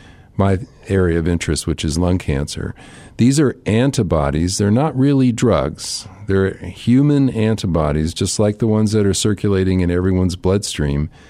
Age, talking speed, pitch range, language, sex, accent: 50-69, 150 wpm, 85-110 Hz, English, male, American